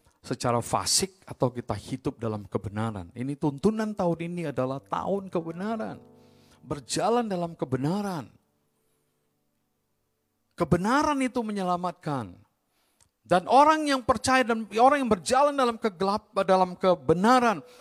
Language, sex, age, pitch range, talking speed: Indonesian, male, 50-69, 120-200 Hz, 110 wpm